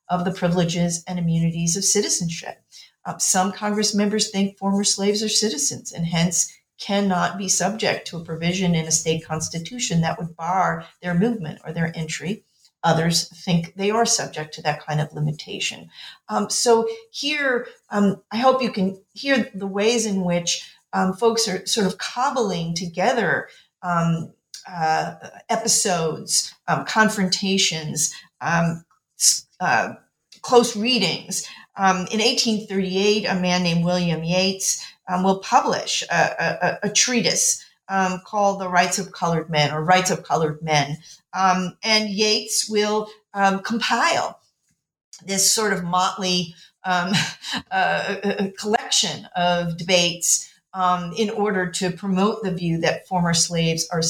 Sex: female